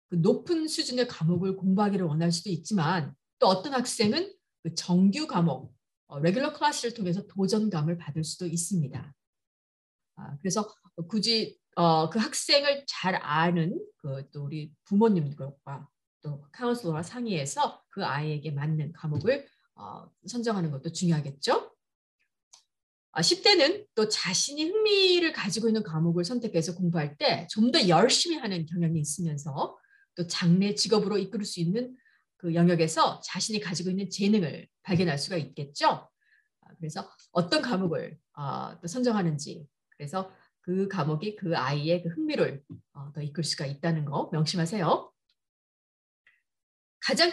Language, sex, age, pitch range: Korean, female, 40-59, 160-230 Hz